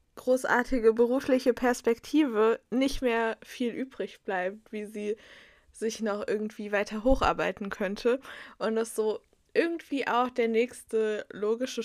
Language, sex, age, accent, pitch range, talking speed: German, female, 20-39, German, 215-255 Hz, 120 wpm